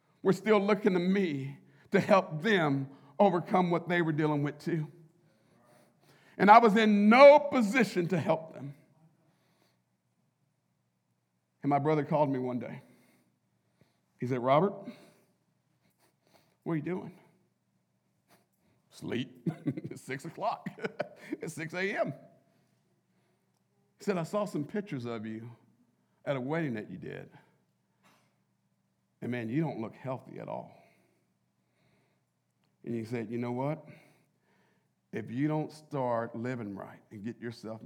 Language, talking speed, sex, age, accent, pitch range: English, 130 wpm, male, 50-69, American, 110-165 Hz